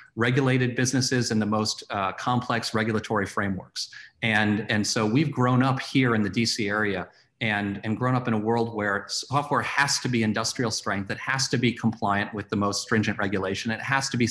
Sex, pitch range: male, 105-125 Hz